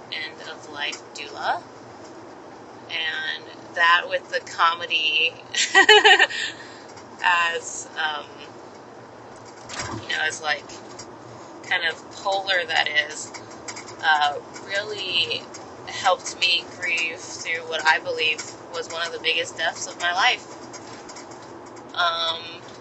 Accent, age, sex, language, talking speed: American, 20-39, female, English, 105 wpm